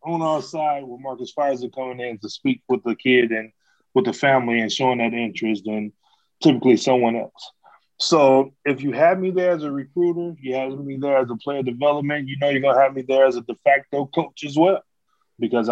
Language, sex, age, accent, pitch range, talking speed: English, male, 20-39, American, 115-135 Hz, 220 wpm